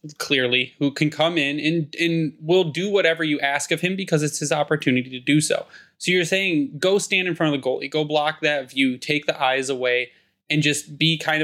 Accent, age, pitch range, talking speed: American, 20-39, 130-155 Hz, 225 wpm